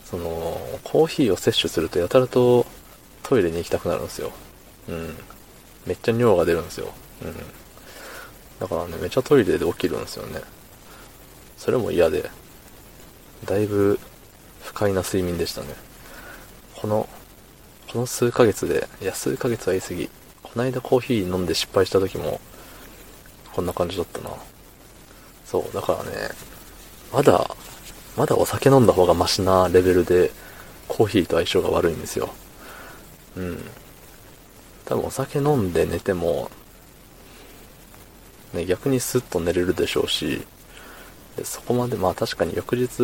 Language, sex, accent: Japanese, male, native